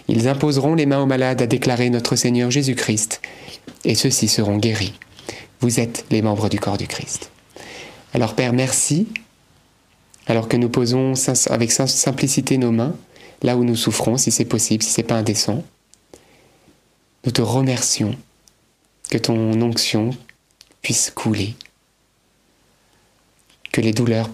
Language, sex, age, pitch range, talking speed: French, male, 30-49, 110-130 Hz, 140 wpm